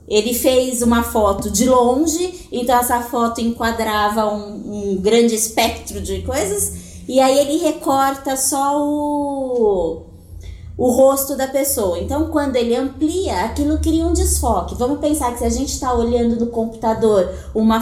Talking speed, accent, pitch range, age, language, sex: 150 wpm, Brazilian, 225-290 Hz, 20-39, Portuguese, female